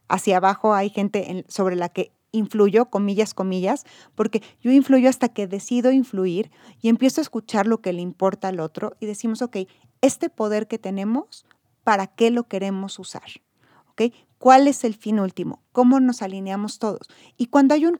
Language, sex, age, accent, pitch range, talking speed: Spanish, female, 30-49, Mexican, 200-245 Hz, 175 wpm